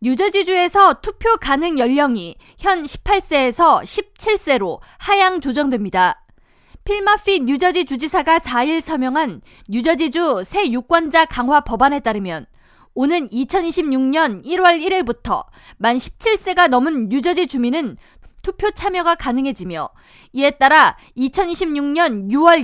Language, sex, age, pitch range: Korean, female, 20-39, 260-360 Hz